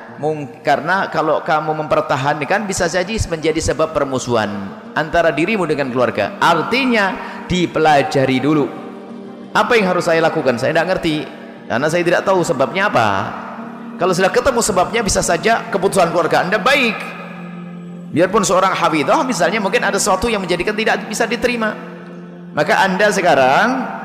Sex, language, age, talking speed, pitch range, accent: male, Indonesian, 30-49, 135 wpm, 160-195 Hz, native